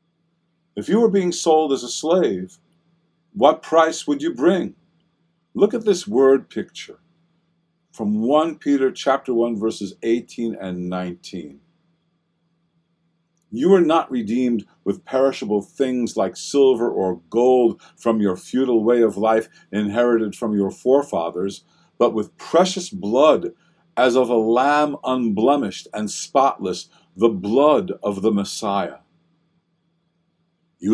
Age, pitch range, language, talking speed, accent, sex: 50-69, 120-170 Hz, English, 125 wpm, American, male